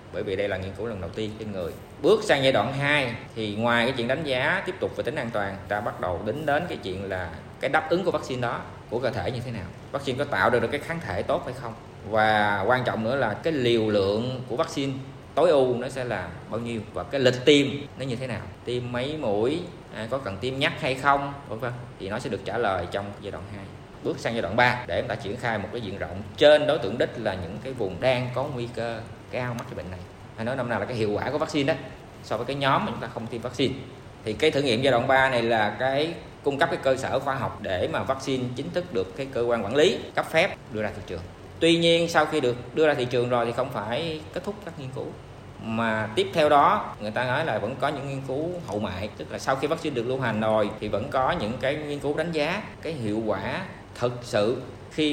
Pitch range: 105-140 Hz